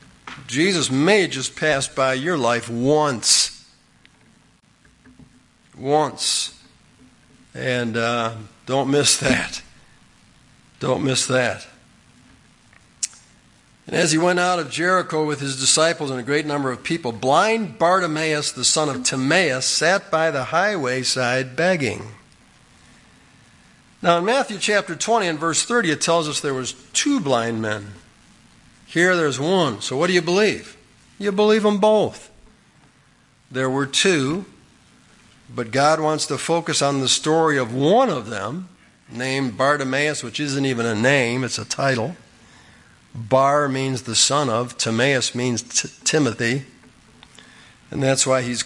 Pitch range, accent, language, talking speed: 125-160 Hz, American, English, 135 wpm